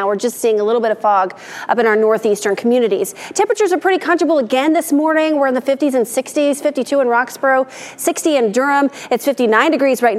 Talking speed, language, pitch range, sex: 210 wpm, English, 220-285 Hz, female